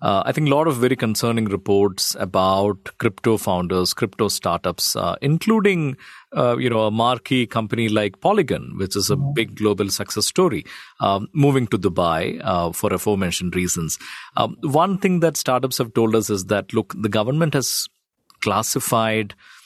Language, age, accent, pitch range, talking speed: English, 40-59, Indian, 100-135 Hz, 165 wpm